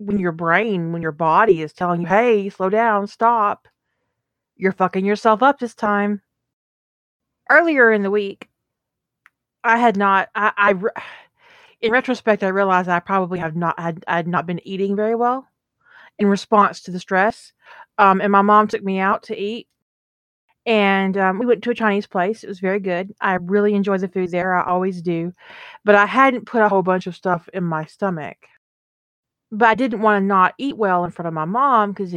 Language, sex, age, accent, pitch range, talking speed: English, female, 30-49, American, 180-230 Hz, 200 wpm